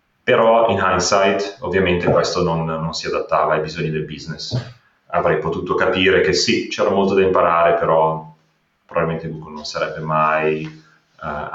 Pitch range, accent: 80-100 Hz, native